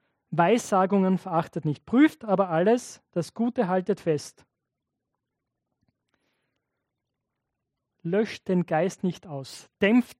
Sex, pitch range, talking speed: male, 165-220 Hz, 95 wpm